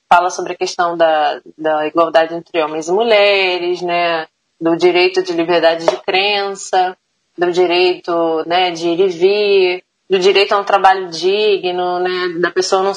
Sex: female